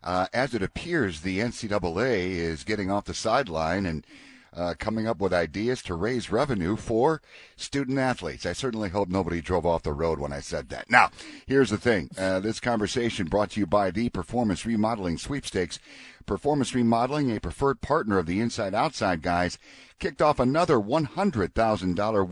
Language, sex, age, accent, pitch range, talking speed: English, male, 50-69, American, 95-120 Hz, 170 wpm